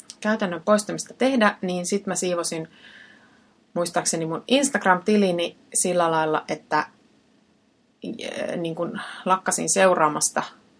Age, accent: 30-49, native